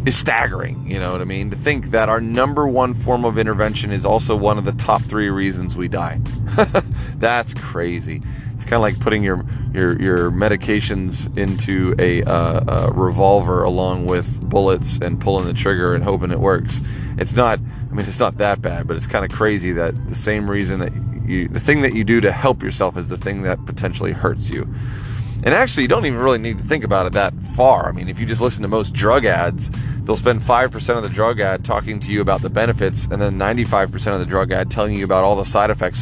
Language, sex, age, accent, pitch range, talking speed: English, male, 30-49, American, 100-125 Hz, 230 wpm